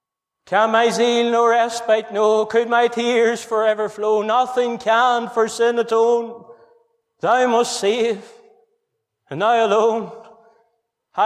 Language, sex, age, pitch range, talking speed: English, male, 30-49, 190-235 Hz, 115 wpm